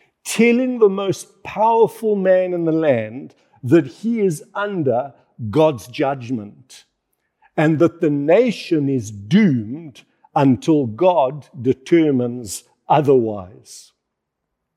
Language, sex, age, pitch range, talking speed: English, male, 50-69, 135-200 Hz, 100 wpm